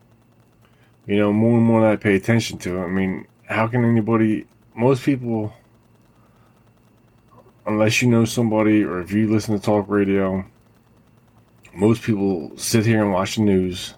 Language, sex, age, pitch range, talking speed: English, male, 20-39, 100-115 Hz, 160 wpm